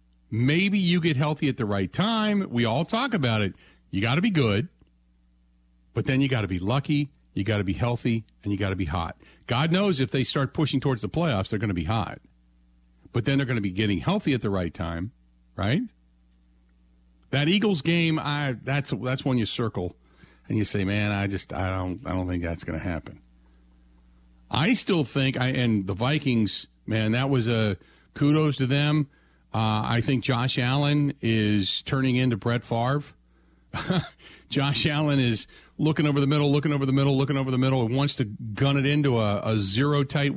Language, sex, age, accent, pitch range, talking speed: English, male, 50-69, American, 95-140 Hz, 200 wpm